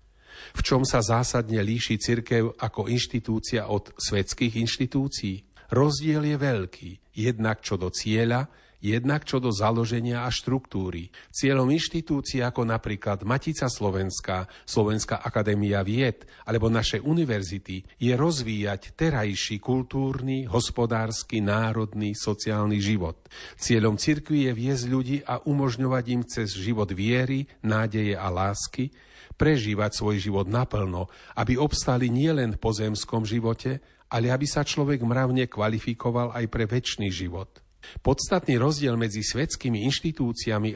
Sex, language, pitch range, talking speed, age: male, Slovak, 105-130 Hz, 120 wpm, 40-59